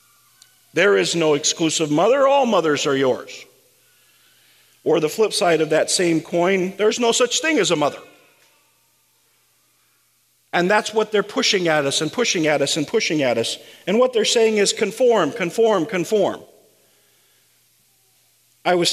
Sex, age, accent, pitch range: male, 50-69, American, 155-210 Hz